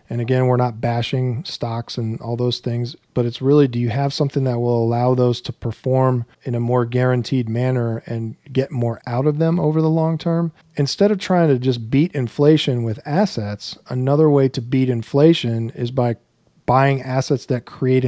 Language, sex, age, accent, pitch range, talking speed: English, male, 40-59, American, 115-135 Hz, 195 wpm